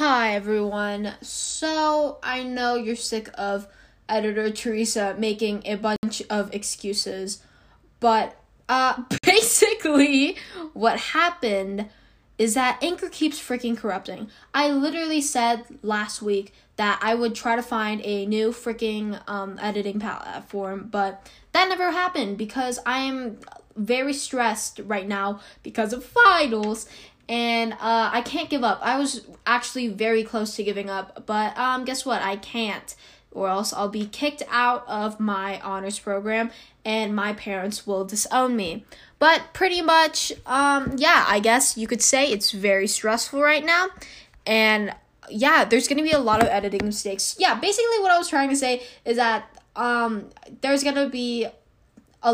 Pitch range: 210-265 Hz